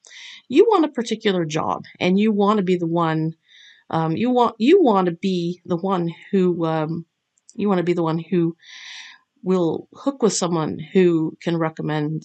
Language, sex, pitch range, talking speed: English, female, 165-210 Hz, 180 wpm